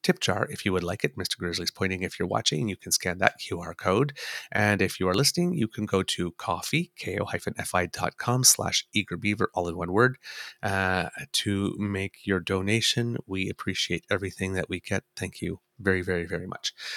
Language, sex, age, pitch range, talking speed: English, male, 30-49, 95-130 Hz, 190 wpm